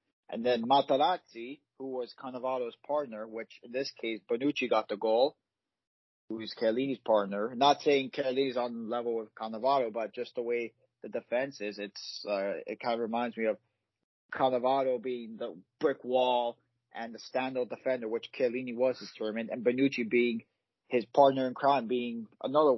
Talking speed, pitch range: 170 wpm, 115-130 Hz